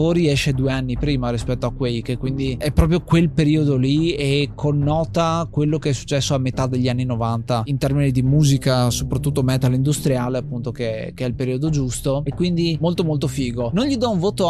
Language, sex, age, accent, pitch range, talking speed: Italian, male, 20-39, native, 125-150 Hz, 205 wpm